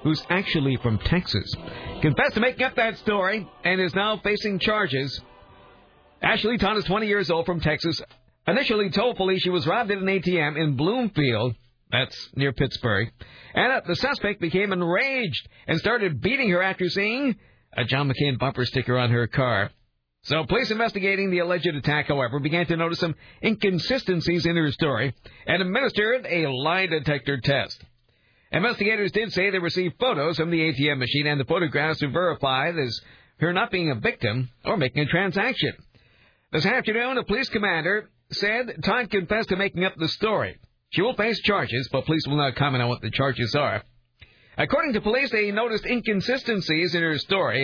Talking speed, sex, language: 175 wpm, male, English